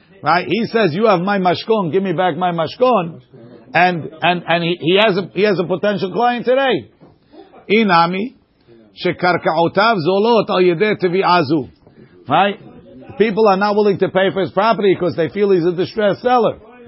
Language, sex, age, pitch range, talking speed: English, male, 50-69, 175-220 Hz, 175 wpm